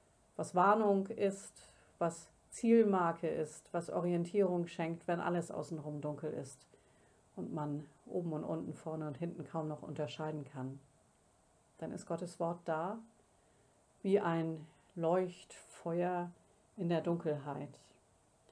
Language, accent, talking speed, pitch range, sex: German, German, 120 wpm, 160-180 Hz, female